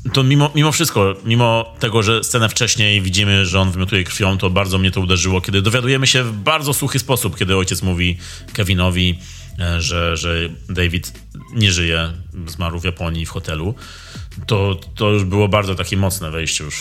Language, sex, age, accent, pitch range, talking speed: Polish, male, 30-49, native, 90-115 Hz, 175 wpm